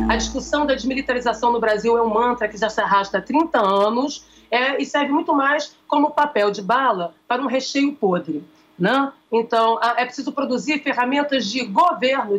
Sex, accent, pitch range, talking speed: female, Brazilian, 230-295 Hz, 185 wpm